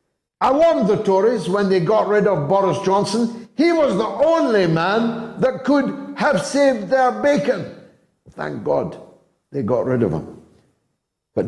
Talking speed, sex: 155 wpm, male